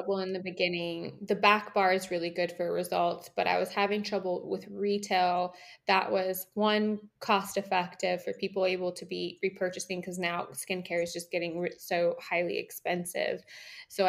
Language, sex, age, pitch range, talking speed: English, female, 20-39, 170-195 Hz, 165 wpm